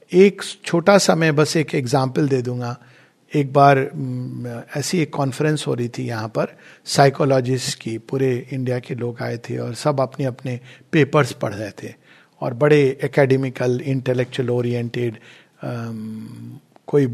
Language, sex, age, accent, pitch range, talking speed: Hindi, male, 50-69, native, 130-185 Hz, 145 wpm